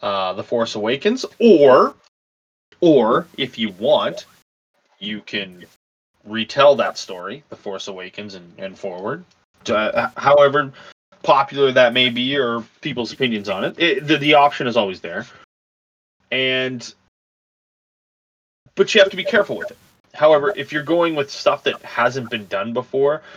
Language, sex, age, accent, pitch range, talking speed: English, male, 20-39, American, 115-150 Hz, 150 wpm